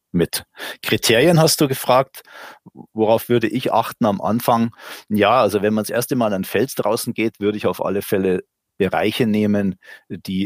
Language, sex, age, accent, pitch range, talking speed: German, male, 40-59, German, 95-120 Hz, 180 wpm